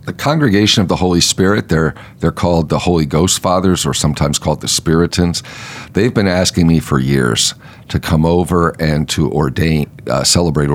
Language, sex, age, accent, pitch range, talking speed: English, male, 50-69, American, 70-90 Hz, 185 wpm